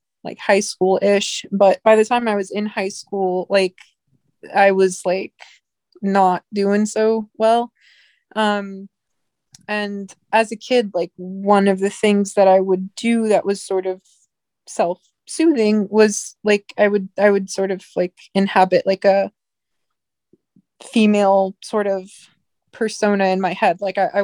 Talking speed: 150 wpm